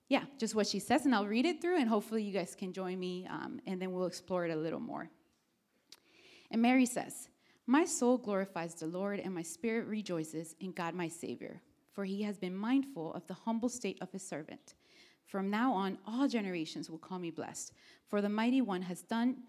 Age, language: 30-49, English